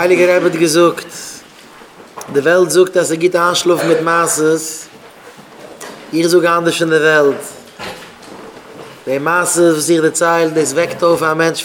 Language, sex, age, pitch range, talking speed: English, male, 30-49, 155-175 Hz, 115 wpm